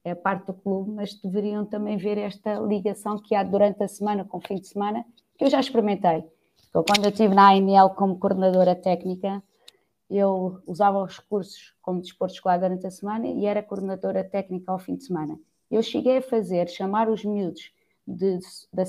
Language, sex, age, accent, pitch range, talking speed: Portuguese, female, 20-39, Brazilian, 190-225 Hz, 195 wpm